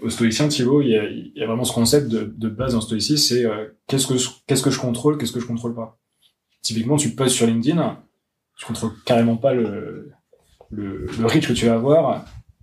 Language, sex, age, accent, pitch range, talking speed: French, male, 20-39, French, 115-135 Hz, 220 wpm